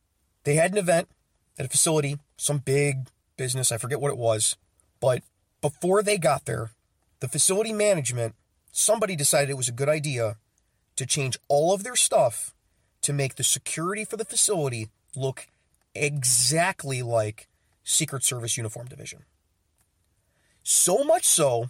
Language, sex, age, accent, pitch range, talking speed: English, male, 30-49, American, 115-160 Hz, 145 wpm